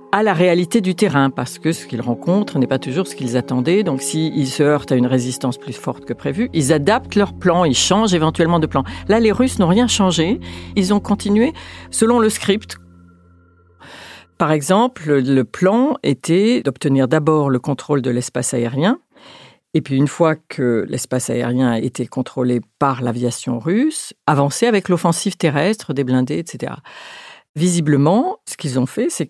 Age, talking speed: 50-69, 180 wpm